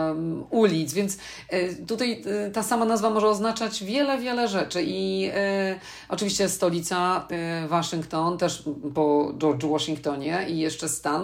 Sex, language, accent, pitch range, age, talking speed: female, Polish, native, 150-180 Hz, 40-59, 125 wpm